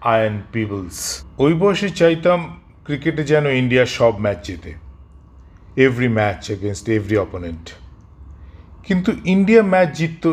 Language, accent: Bengali, native